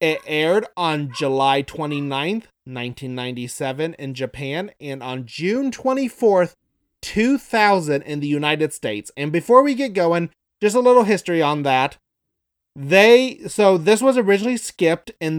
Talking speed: 135 wpm